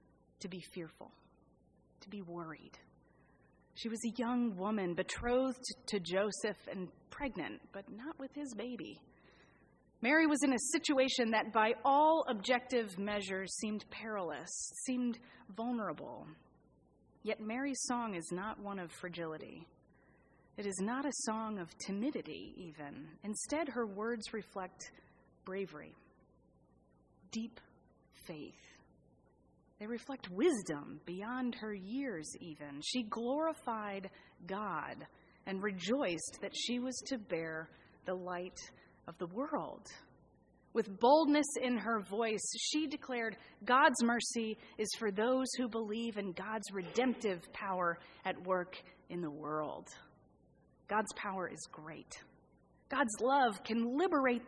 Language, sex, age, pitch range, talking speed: English, female, 30-49, 185-250 Hz, 120 wpm